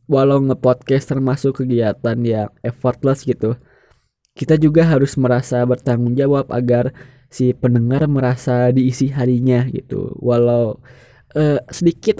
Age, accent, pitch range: 20-39, native, 125-140 Hz